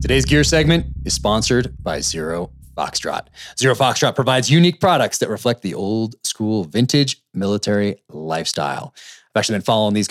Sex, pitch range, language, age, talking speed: male, 95-125 Hz, English, 30-49, 155 wpm